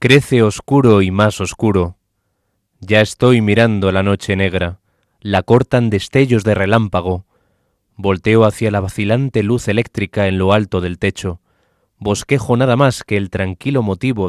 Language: Spanish